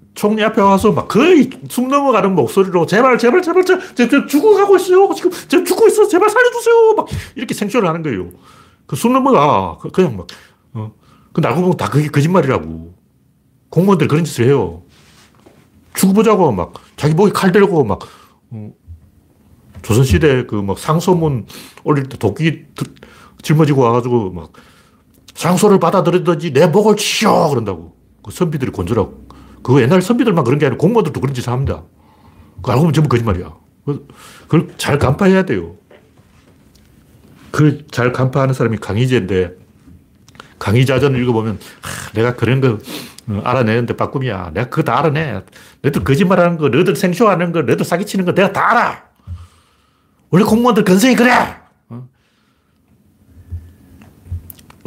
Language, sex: Korean, male